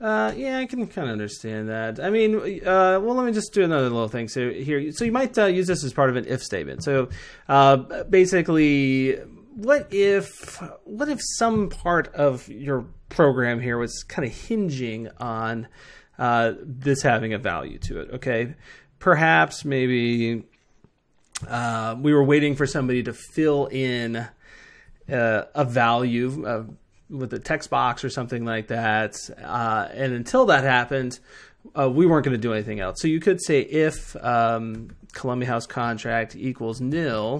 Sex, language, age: male, English, 30-49